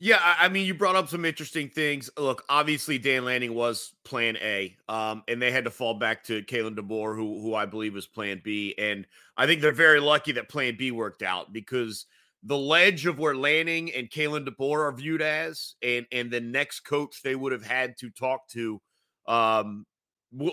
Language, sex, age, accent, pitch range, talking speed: English, male, 30-49, American, 120-155 Hz, 205 wpm